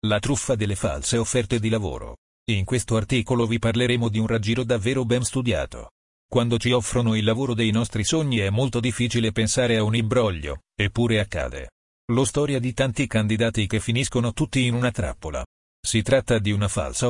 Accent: native